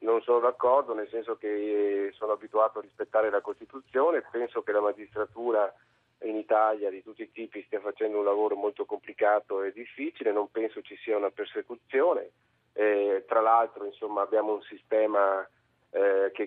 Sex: male